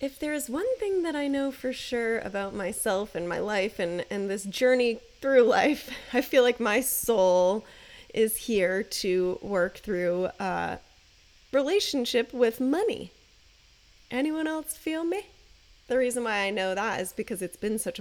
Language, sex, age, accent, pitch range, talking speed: English, female, 10-29, American, 195-275 Hz, 170 wpm